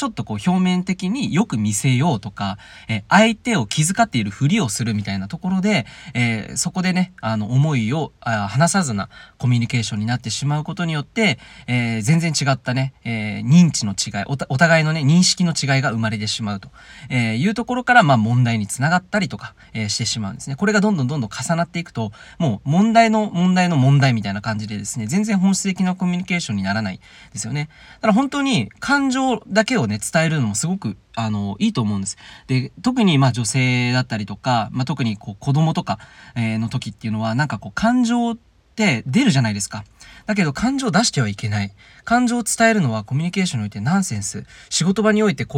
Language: Japanese